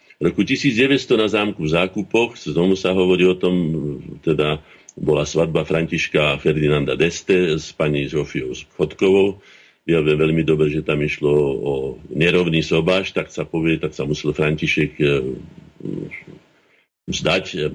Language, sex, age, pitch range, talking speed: Slovak, male, 50-69, 80-95 Hz, 130 wpm